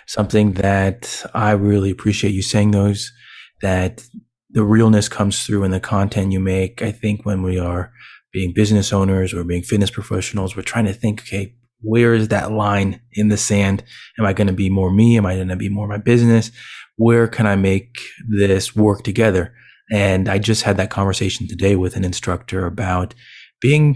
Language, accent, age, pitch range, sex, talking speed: English, American, 20-39, 100-120 Hz, male, 190 wpm